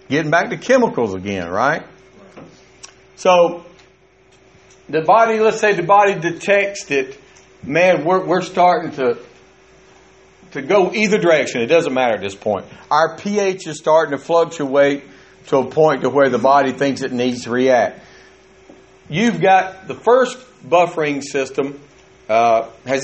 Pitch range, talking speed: 130-190 Hz, 145 wpm